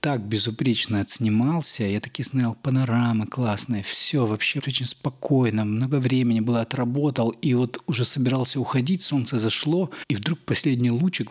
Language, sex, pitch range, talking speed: Russian, male, 110-130 Hz, 145 wpm